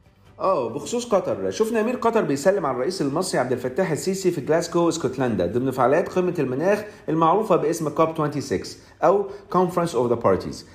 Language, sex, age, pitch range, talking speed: Arabic, male, 40-59, 130-175 Hz, 160 wpm